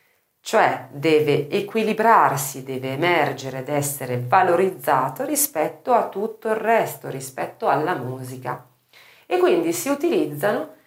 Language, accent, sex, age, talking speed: Italian, native, female, 40-59, 110 wpm